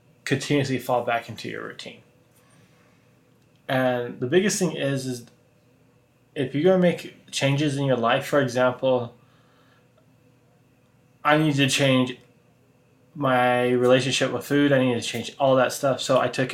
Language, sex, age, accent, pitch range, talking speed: English, male, 20-39, American, 120-140 Hz, 150 wpm